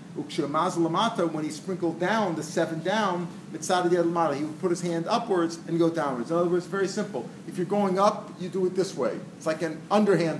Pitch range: 160-195 Hz